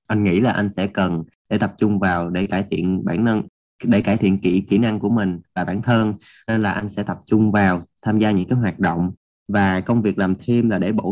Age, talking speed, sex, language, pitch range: 20-39, 255 wpm, male, Vietnamese, 95-125 Hz